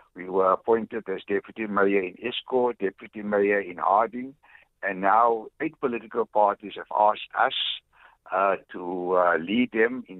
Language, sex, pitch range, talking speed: English, male, 95-115 Hz, 155 wpm